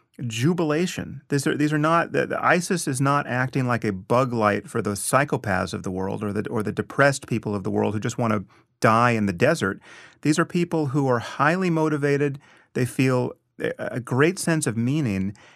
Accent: American